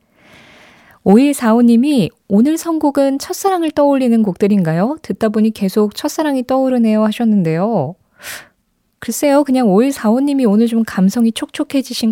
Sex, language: female, Korean